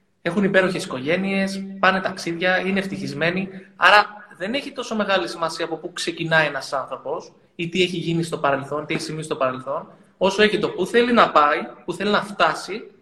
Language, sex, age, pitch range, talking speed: Greek, male, 20-39, 170-205 Hz, 180 wpm